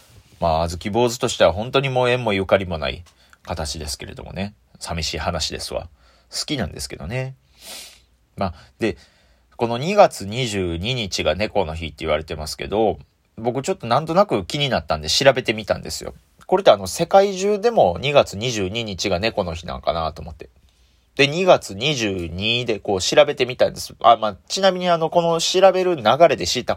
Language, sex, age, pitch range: Japanese, male, 30-49, 85-135 Hz